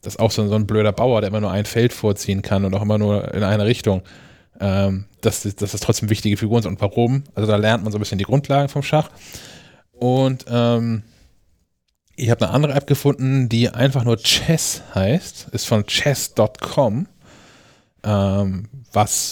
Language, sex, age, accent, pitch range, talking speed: German, male, 20-39, German, 105-120 Hz, 205 wpm